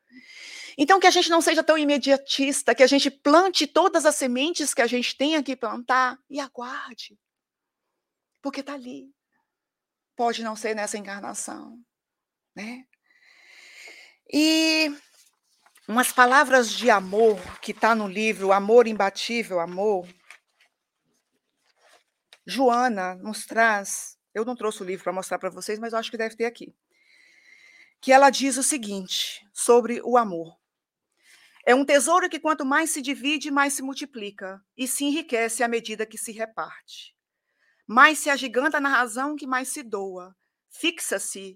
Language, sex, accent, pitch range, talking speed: Portuguese, female, Brazilian, 215-290 Hz, 145 wpm